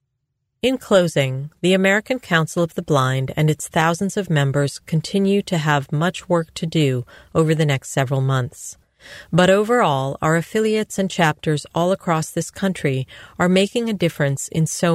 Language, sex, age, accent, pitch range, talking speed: English, female, 40-59, American, 140-175 Hz, 165 wpm